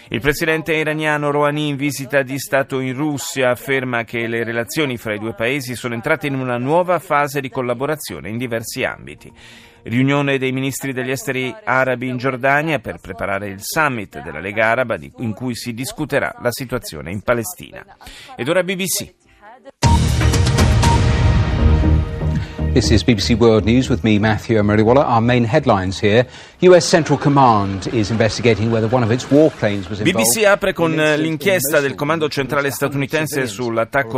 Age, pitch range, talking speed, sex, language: 40-59, 115-140 Hz, 110 wpm, male, Italian